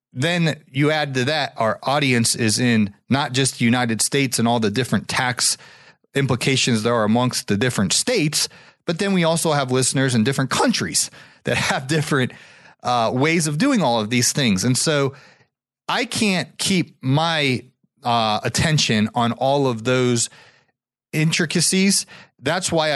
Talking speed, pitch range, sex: 160 wpm, 130-170 Hz, male